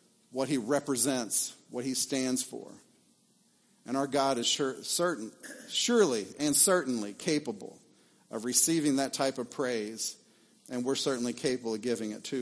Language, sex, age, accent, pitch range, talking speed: English, male, 50-69, American, 140-205 Hz, 150 wpm